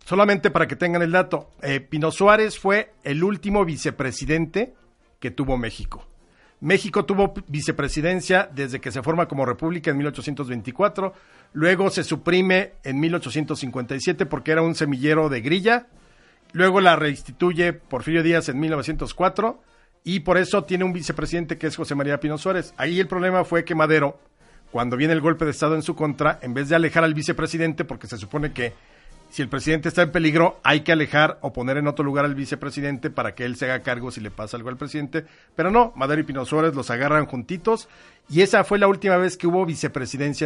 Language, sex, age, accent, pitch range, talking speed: Spanish, male, 50-69, Mexican, 140-175 Hz, 190 wpm